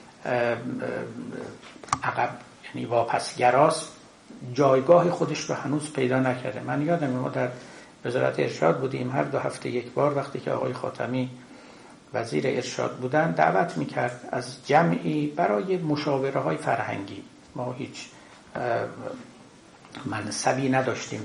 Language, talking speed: Persian, 115 wpm